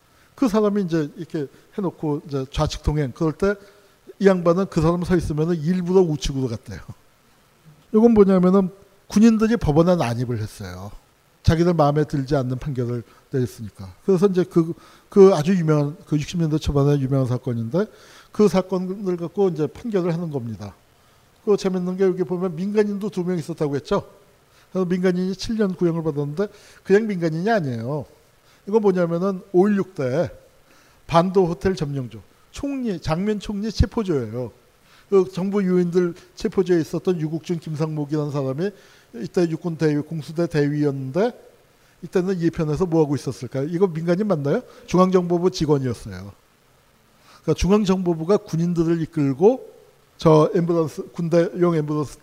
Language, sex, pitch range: Korean, male, 145-190 Hz